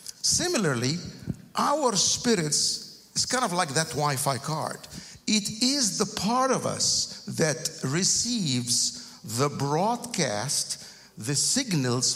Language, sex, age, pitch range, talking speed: English, male, 50-69, 130-200 Hz, 110 wpm